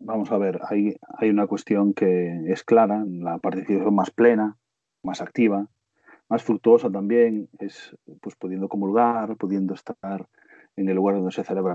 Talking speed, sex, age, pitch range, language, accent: 160 wpm, male, 40-59, 95-115 Hz, Spanish, Spanish